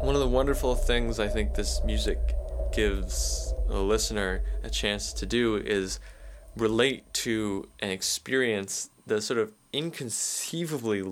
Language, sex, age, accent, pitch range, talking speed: English, male, 20-39, American, 90-115 Hz, 135 wpm